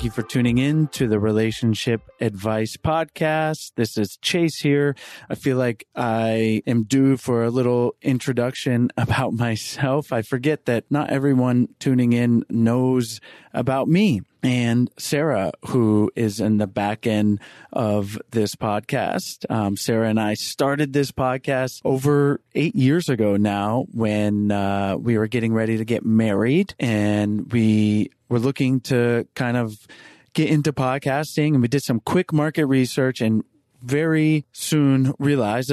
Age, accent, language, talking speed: 30-49, American, English, 150 wpm